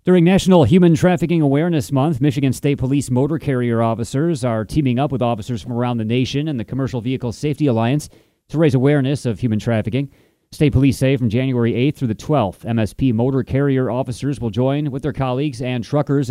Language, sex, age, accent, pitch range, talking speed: English, male, 30-49, American, 115-140 Hz, 195 wpm